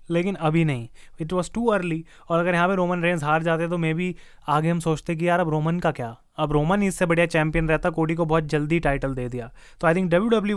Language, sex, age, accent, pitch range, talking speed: Hindi, male, 20-39, native, 155-180 Hz, 255 wpm